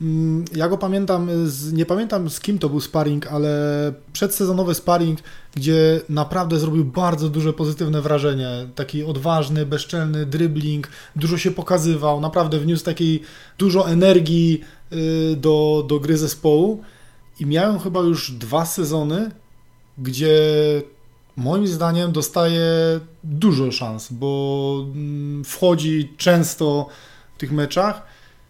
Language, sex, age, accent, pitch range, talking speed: Polish, male, 20-39, native, 145-170 Hz, 115 wpm